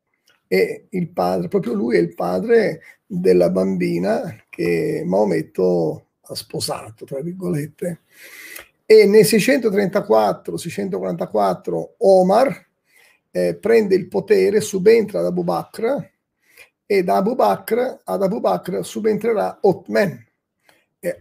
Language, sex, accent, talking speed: Italian, male, native, 110 wpm